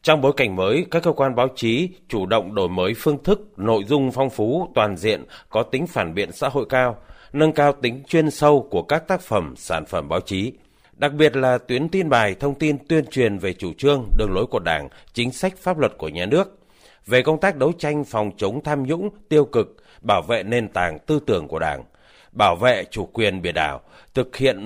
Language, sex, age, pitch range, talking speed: Vietnamese, male, 30-49, 115-155 Hz, 225 wpm